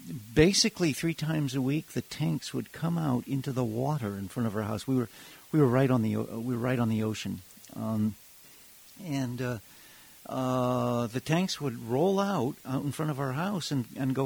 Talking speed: 205 wpm